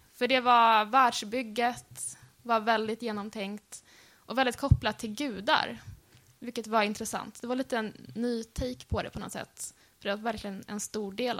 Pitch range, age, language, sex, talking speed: 210-245 Hz, 10-29, Swedish, female, 175 wpm